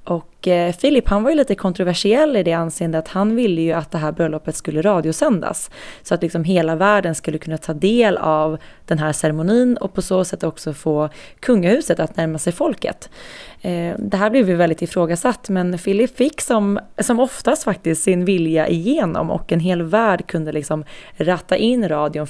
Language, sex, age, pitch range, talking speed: Swedish, female, 20-39, 165-200 Hz, 185 wpm